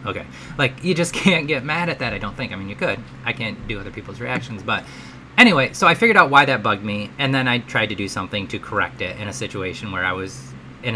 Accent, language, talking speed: American, English, 270 wpm